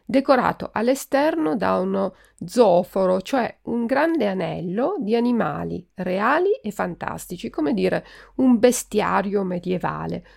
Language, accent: Italian, native